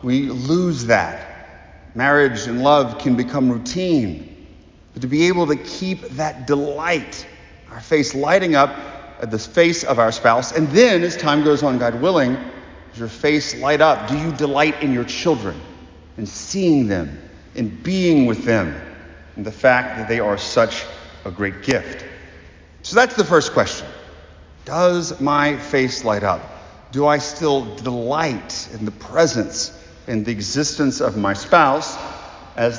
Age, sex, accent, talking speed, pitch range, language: 40-59, male, American, 160 wpm, 110-155 Hz, English